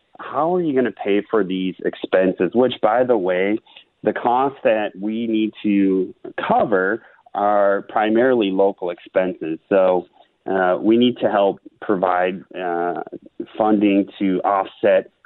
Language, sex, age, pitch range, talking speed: English, male, 30-49, 95-105 Hz, 140 wpm